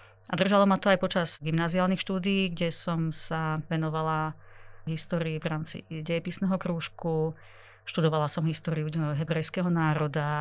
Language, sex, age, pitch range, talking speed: Slovak, female, 30-49, 160-180 Hz, 135 wpm